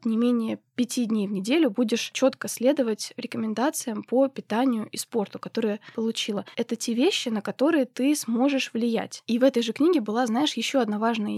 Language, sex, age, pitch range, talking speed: Russian, female, 20-39, 225-265 Hz, 180 wpm